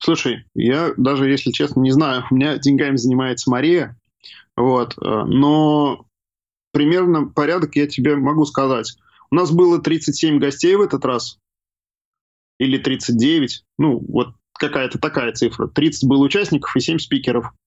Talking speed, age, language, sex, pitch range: 140 wpm, 20-39, Russian, male, 125-155 Hz